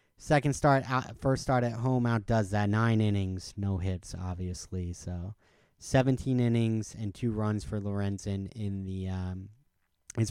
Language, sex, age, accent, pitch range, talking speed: English, male, 30-49, American, 95-110 Hz, 150 wpm